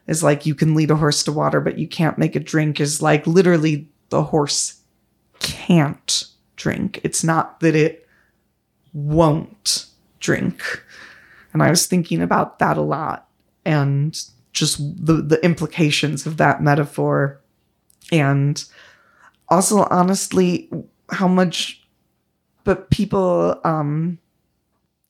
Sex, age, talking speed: female, 30-49, 125 wpm